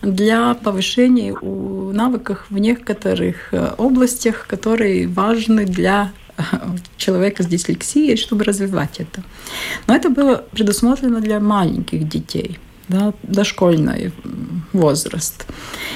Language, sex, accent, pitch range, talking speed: Russian, female, native, 195-245 Hz, 90 wpm